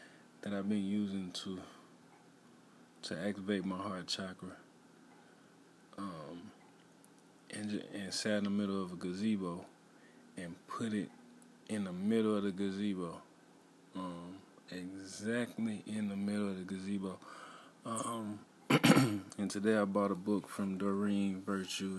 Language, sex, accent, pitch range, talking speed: English, male, American, 95-105 Hz, 130 wpm